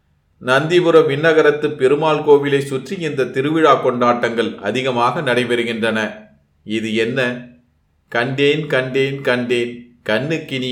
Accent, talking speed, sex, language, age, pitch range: native, 90 wpm, male, Tamil, 30-49, 110-140 Hz